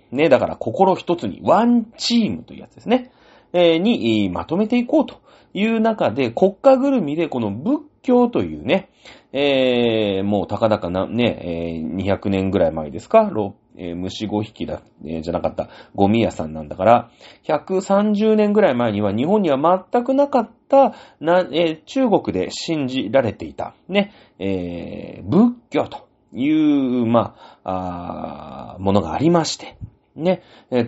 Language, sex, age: Japanese, male, 30-49